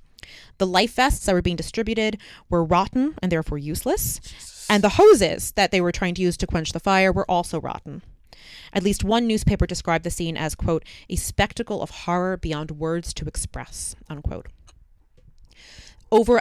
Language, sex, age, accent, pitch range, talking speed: English, female, 20-39, American, 155-195 Hz, 170 wpm